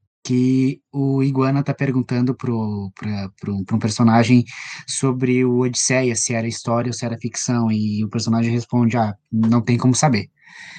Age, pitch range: 20-39, 120-155 Hz